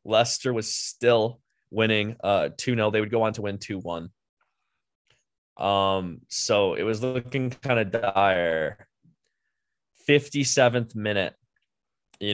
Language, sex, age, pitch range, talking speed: English, male, 20-39, 90-110 Hz, 110 wpm